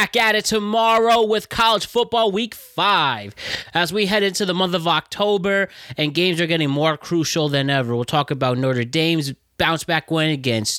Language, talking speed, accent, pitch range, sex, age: English, 195 wpm, American, 130-175 Hz, male, 20-39